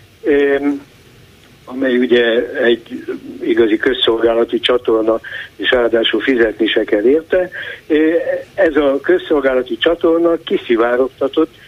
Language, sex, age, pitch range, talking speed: Hungarian, male, 60-79, 125-165 Hz, 85 wpm